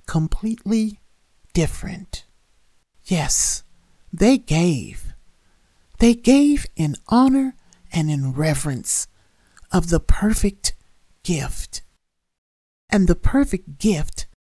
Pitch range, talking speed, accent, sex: 140-205 Hz, 85 wpm, American, male